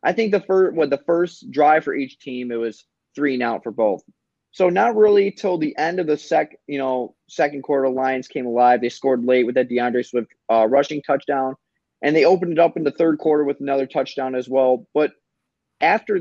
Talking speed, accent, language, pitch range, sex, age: 225 wpm, American, English, 130-170 Hz, male, 30-49